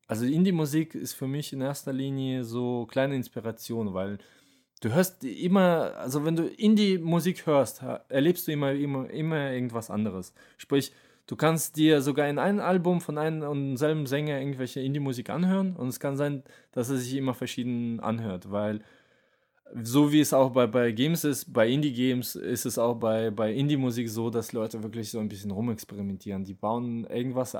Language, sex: German, male